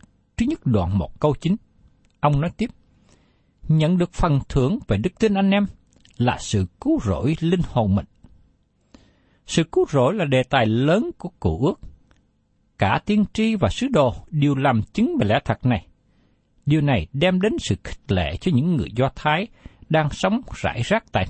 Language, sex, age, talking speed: Vietnamese, male, 60-79, 185 wpm